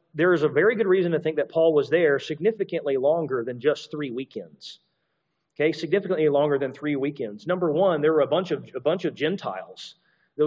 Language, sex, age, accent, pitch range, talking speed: English, male, 40-59, American, 145-180 Hz, 205 wpm